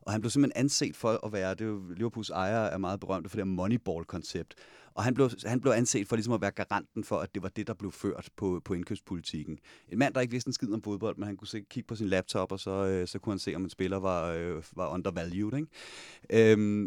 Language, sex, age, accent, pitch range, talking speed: Danish, male, 30-49, native, 95-120 Hz, 255 wpm